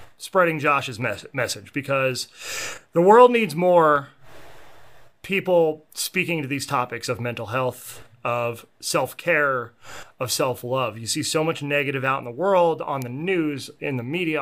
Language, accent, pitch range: English, American, 120-155 Hz